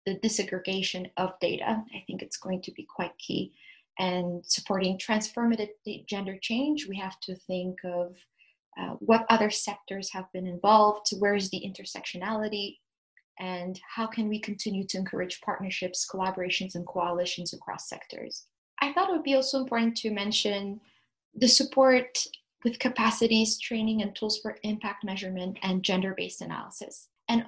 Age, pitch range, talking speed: 20-39, 185-220 Hz, 150 wpm